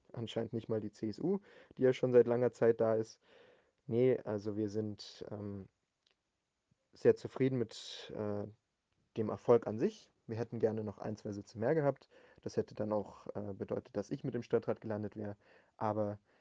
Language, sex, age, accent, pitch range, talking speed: German, male, 30-49, German, 110-125 Hz, 180 wpm